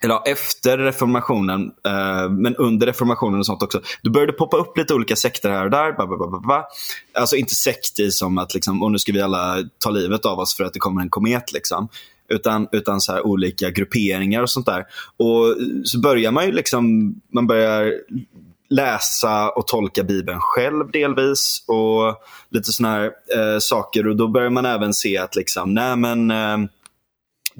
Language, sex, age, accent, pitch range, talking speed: Swedish, male, 20-39, native, 100-120 Hz, 180 wpm